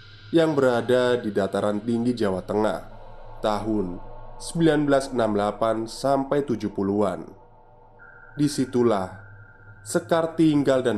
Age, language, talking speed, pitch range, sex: 20-39, Indonesian, 70 wpm, 110-135 Hz, male